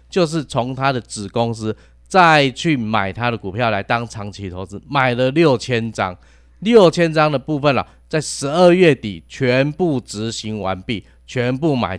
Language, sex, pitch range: Chinese, male, 105-150 Hz